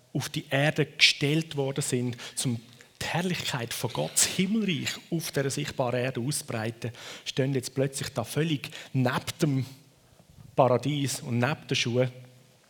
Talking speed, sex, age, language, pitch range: 130 wpm, male, 40-59, German, 120-155 Hz